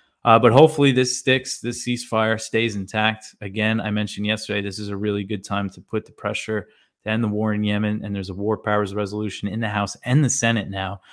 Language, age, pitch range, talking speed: English, 20-39, 100-115 Hz, 225 wpm